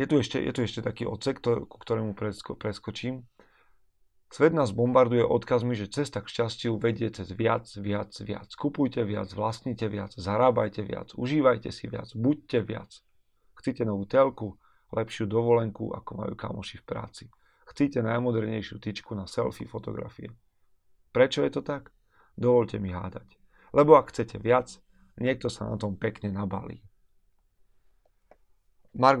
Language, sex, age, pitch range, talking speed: Slovak, male, 40-59, 105-125 Hz, 145 wpm